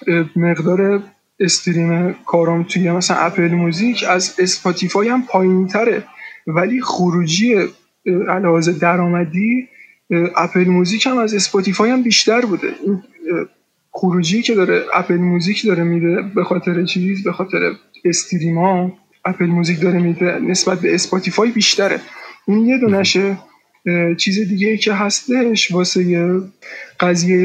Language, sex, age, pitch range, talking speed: Persian, male, 20-39, 175-210 Hz, 120 wpm